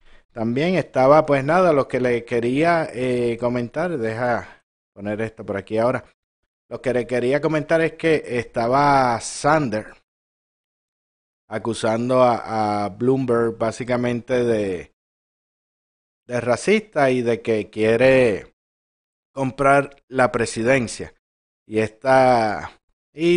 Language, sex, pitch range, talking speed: Spanish, male, 110-130 Hz, 110 wpm